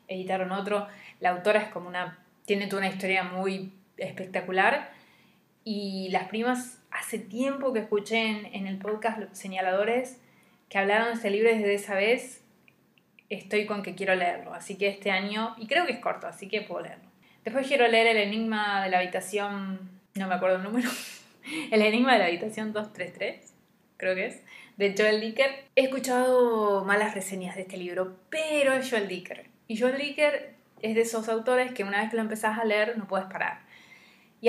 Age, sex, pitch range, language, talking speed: 20-39, female, 190-230 Hz, Spanish, 185 wpm